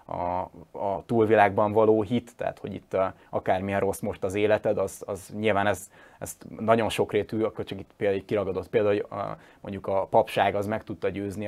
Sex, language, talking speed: male, Hungarian, 190 wpm